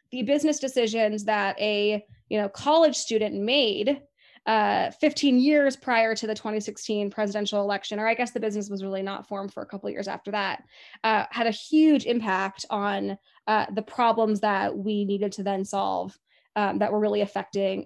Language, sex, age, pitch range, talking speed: English, female, 10-29, 210-245 Hz, 185 wpm